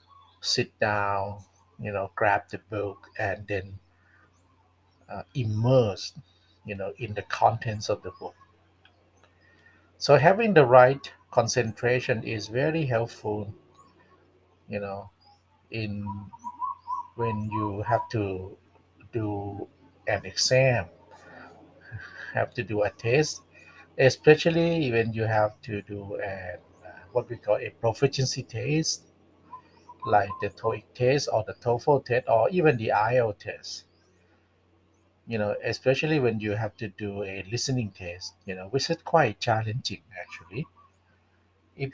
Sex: male